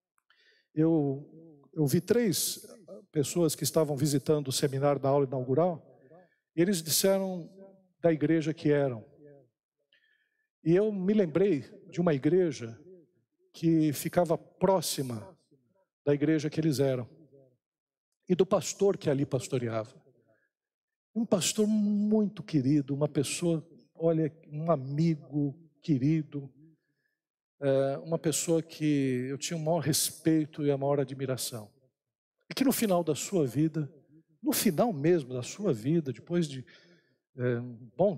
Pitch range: 135-175 Hz